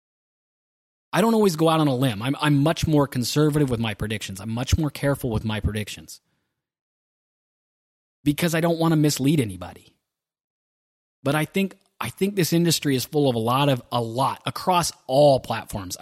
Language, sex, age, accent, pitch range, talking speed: English, male, 30-49, American, 120-155 Hz, 180 wpm